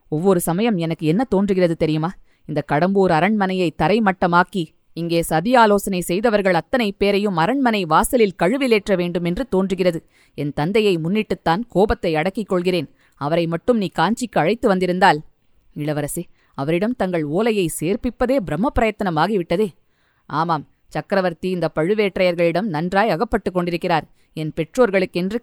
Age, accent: 20-39, native